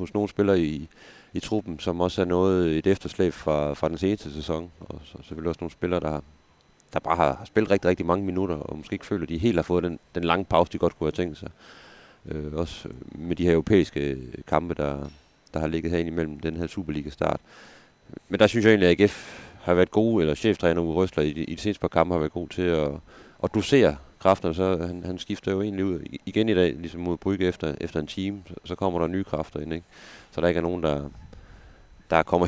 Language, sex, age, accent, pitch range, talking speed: Danish, male, 30-49, native, 75-95 Hz, 240 wpm